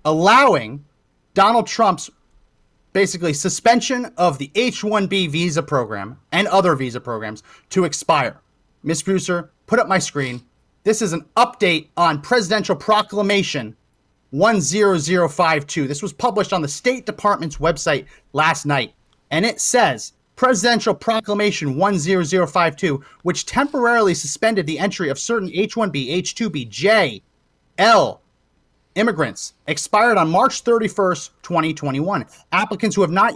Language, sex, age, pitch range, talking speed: English, male, 30-49, 145-200 Hz, 120 wpm